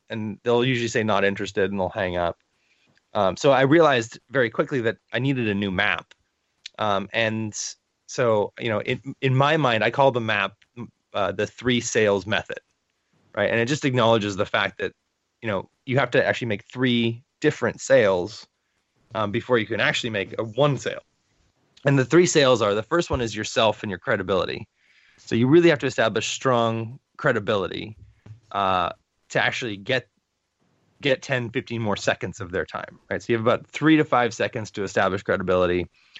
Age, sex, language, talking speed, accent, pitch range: 20-39, male, English, 185 wpm, American, 100-130 Hz